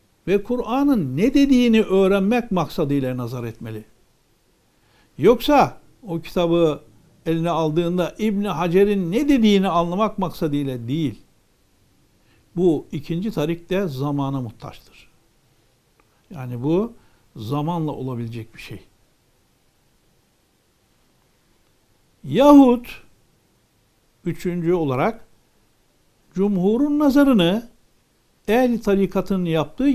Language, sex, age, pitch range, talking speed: Turkish, male, 60-79, 135-200 Hz, 80 wpm